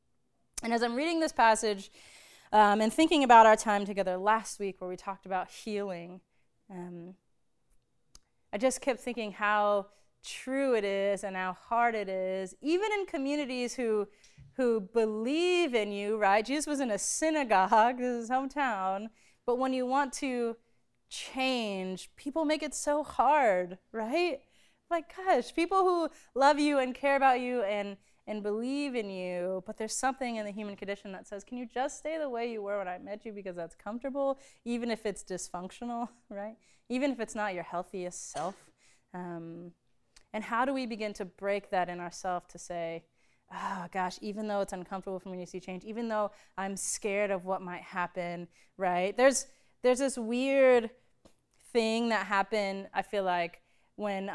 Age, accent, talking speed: 20-39, American, 175 wpm